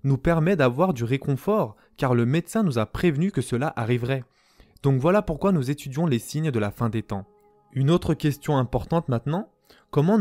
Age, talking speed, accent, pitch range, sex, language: 20-39, 190 wpm, French, 125-175 Hz, male, French